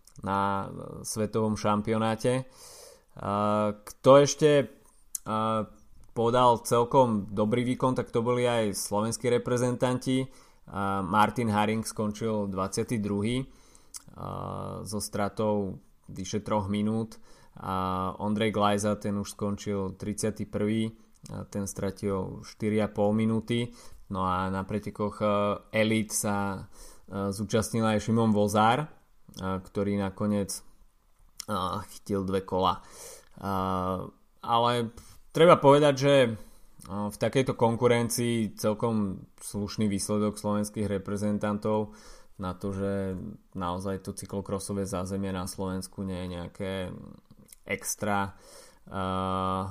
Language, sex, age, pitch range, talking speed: Slovak, male, 20-39, 100-110 Hz, 95 wpm